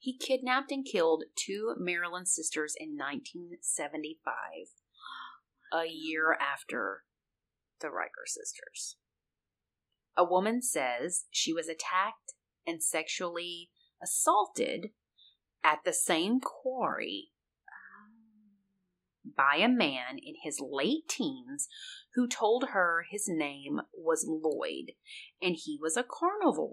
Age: 30-49